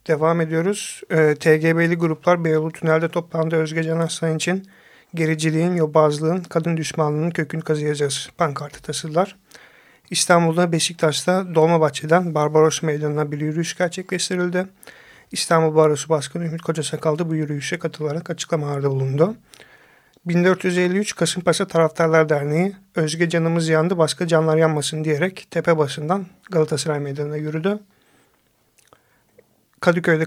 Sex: male